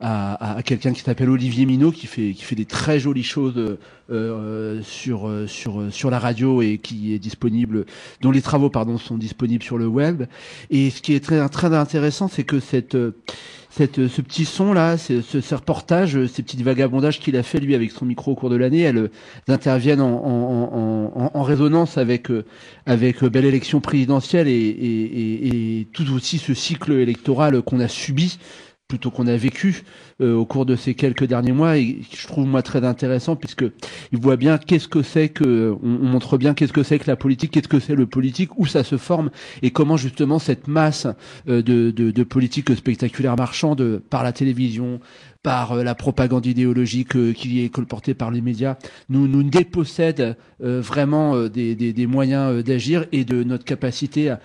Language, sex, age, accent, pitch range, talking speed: French, male, 40-59, French, 120-145 Hz, 190 wpm